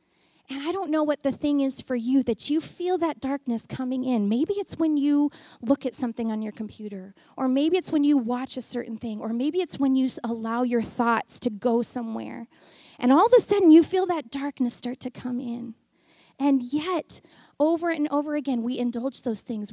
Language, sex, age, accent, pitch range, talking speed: English, female, 30-49, American, 255-360 Hz, 215 wpm